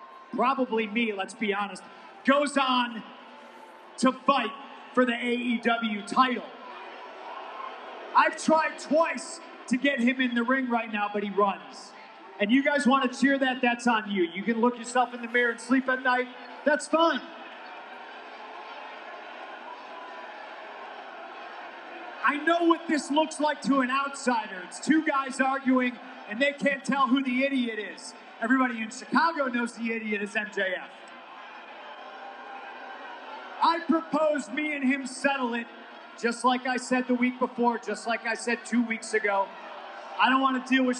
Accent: American